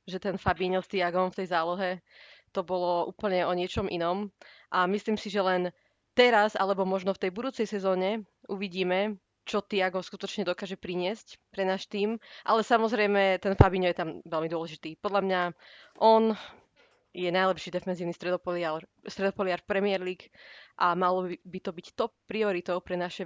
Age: 20-39